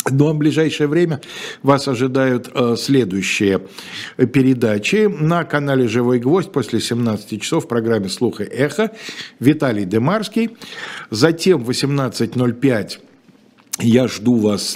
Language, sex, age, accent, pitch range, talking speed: Russian, male, 50-69, native, 110-140 Hz, 120 wpm